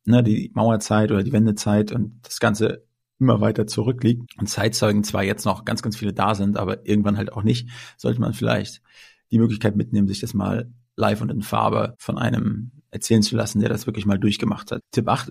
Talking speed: 205 wpm